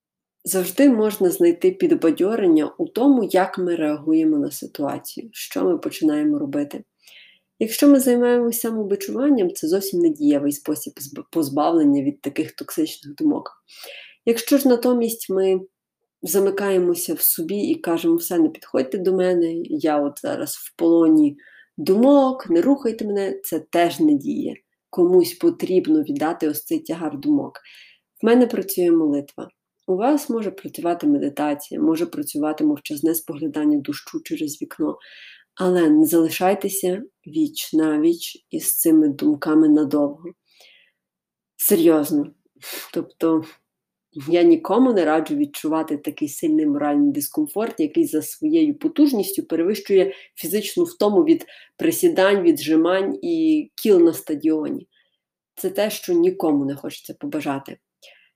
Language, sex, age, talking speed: Ukrainian, female, 30-49, 120 wpm